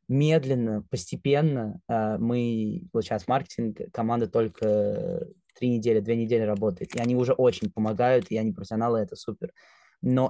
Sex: male